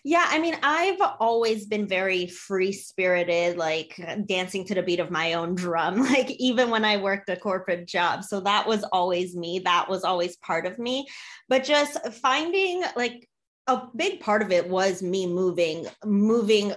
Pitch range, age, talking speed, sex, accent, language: 185-250 Hz, 20-39, 180 wpm, female, American, English